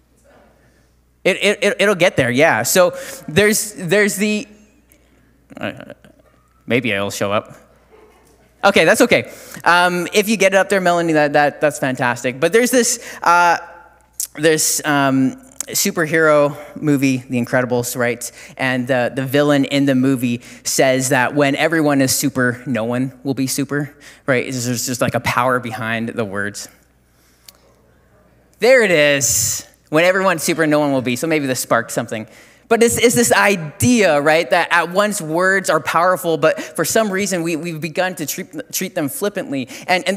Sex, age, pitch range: male, 20-39, 130-195 Hz